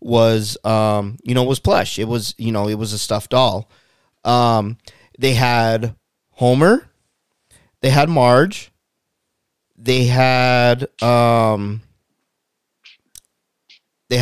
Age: 30-49